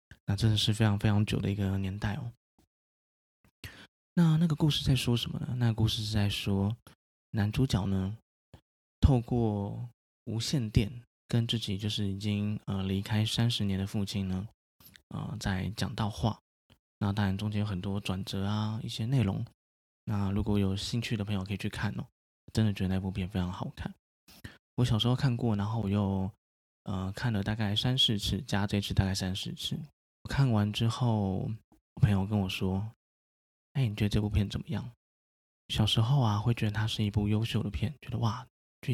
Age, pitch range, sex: 20-39, 95-115 Hz, male